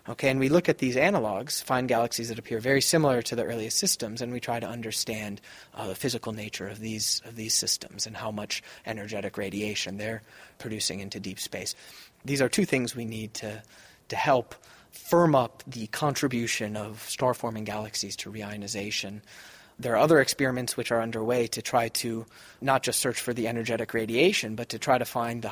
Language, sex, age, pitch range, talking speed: English, male, 30-49, 110-125 Hz, 195 wpm